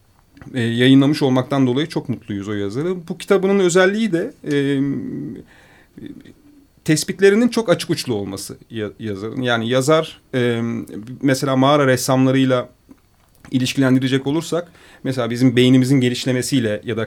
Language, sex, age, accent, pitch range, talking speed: Turkish, male, 40-59, native, 115-150 Hz, 115 wpm